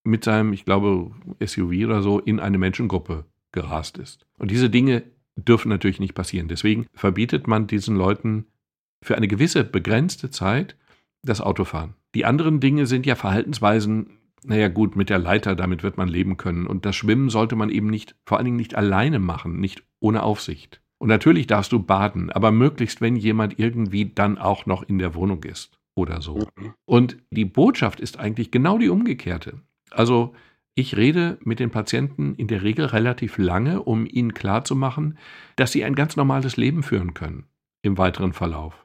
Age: 50-69